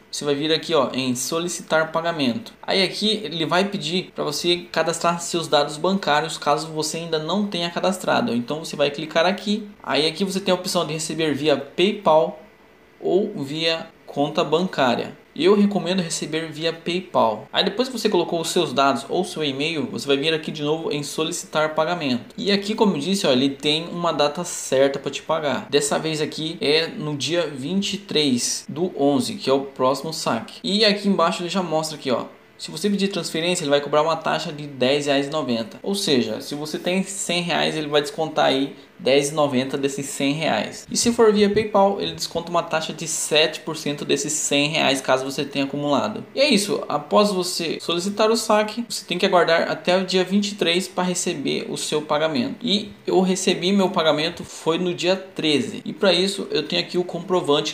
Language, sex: Portuguese, male